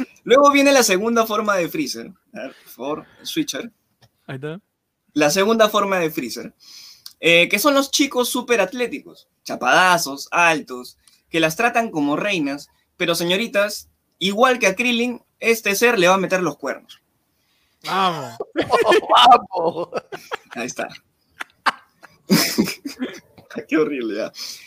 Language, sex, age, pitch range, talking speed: Spanish, male, 20-39, 160-250 Hz, 125 wpm